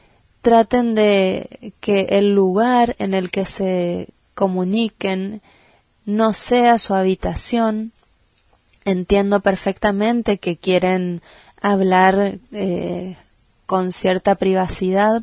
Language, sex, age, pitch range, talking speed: Spanish, female, 20-39, 185-220 Hz, 90 wpm